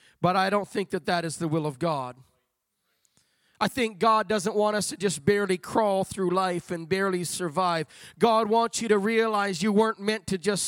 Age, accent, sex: 40-59, American, male